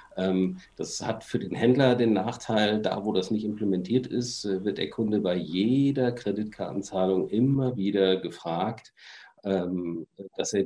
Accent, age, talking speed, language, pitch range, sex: German, 50-69, 135 wpm, German, 90-110 Hz, male